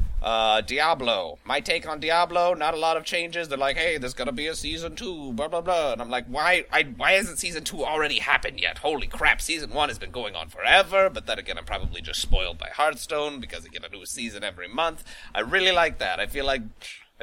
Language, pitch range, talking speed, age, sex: English, 110-165 Hz, 235 wpm, 30-49, male